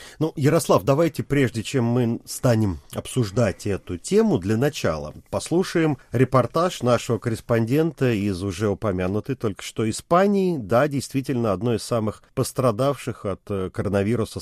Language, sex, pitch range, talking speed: Russian, male, 110-140 Hz, 125 wpm